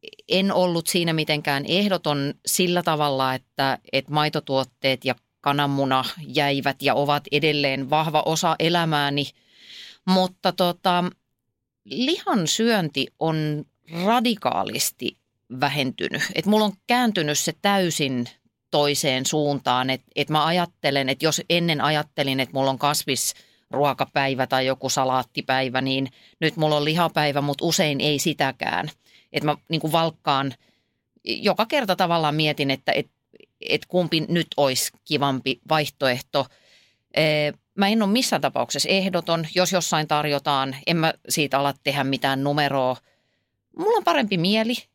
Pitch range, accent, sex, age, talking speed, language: 135-180 Hz, native, female, 30-49, 125 wpm, Finnish